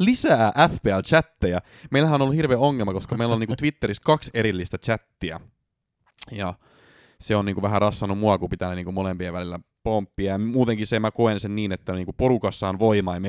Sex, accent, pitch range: male, native, 95-120 Hz